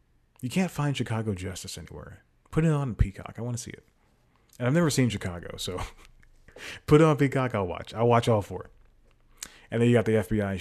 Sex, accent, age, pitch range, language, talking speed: male, American, 30-49, 95-120 Hz, English, 210 wpm